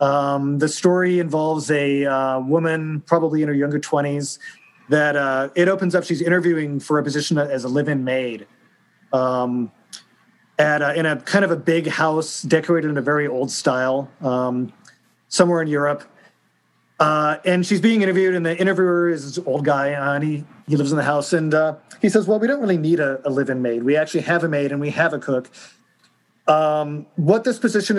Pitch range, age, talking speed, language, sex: 140-175 Hz, 30-49, 195 wpm, English, male